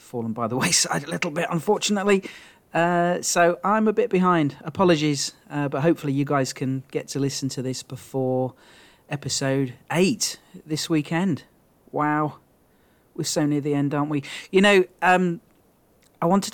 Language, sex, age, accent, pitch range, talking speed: English, male, 40-59, British, 130-170 Hz, 160 wpm